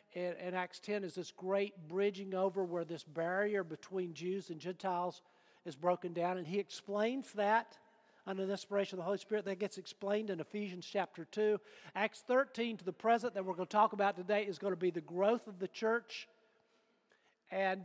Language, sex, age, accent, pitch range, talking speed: English, male, 50-69, American, 185-220 Hz, 200 wpm